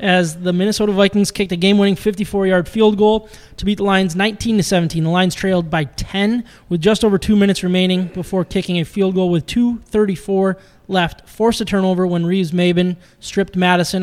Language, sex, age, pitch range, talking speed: English, male, 20-39, 170-200 Hz, 175 wpm